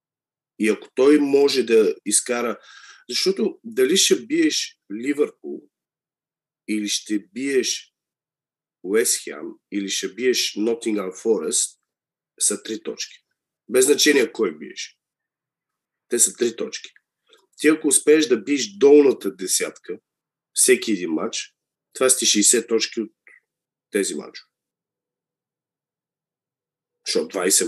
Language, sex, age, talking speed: Bulgarian, male, 40-59, 105 wpm